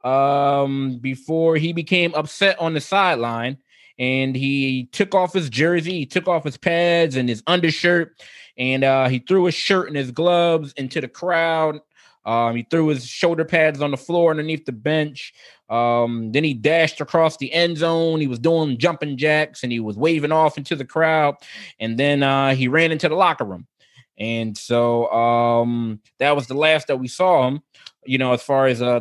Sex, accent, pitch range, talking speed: male, American, 120-155 Hz, 190 wpm